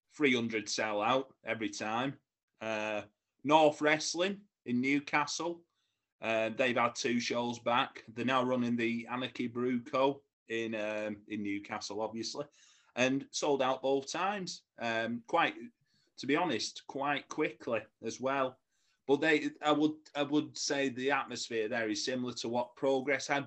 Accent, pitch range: British, 110-140 Hz